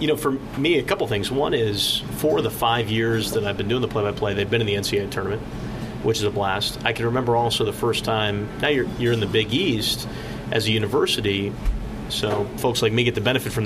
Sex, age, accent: male, 30-49, American